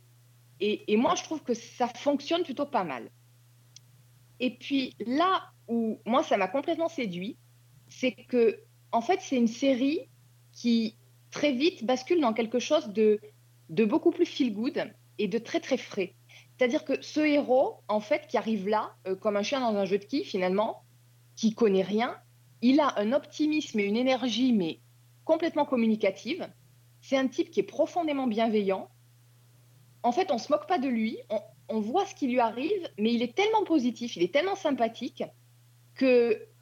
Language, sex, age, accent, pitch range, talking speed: French, female, 30-49, French, 180-275 Hz, 180 wpm